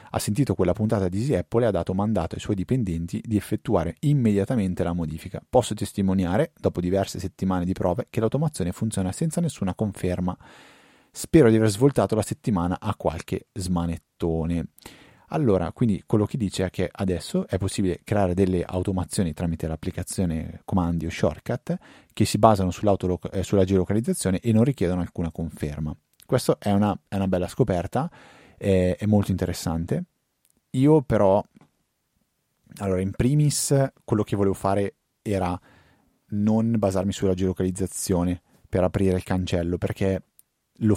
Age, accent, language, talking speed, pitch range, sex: 30-49, native, Italian, 140 wpm, 90-105 Hz, male